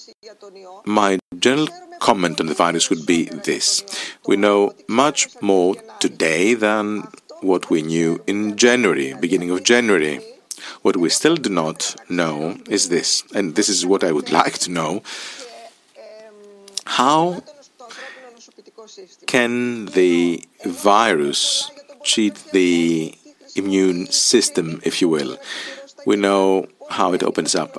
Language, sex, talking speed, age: Greek, male, 125 wpm, 50-69